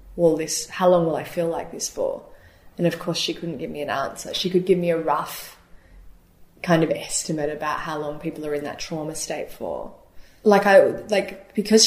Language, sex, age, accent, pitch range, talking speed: English, female, 20-39, Australian, 150-175 Hz, 210 wpm